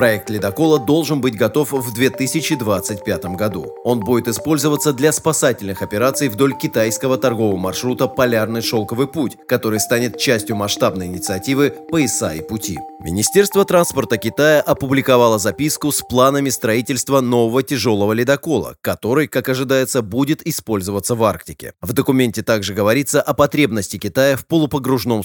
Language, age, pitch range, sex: Russian, 30-49, 110-145 Hz, male